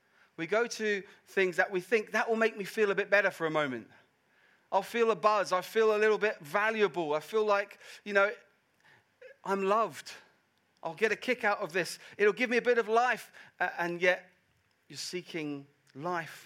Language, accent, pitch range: English, British, 140-200 Hz